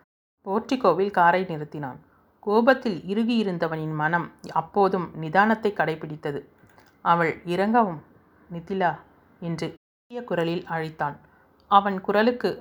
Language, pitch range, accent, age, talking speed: Tamil, 160-200 Hz, native, 30-49, 85 wpm